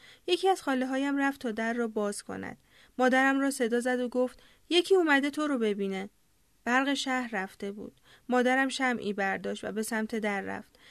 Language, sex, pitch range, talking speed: Persian, female, 210-255 Hz, 180 wpm